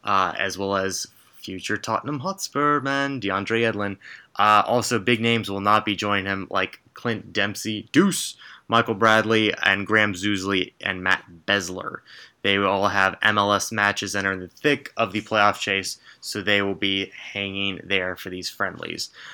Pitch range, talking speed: 100-120 Hz, 170 wpm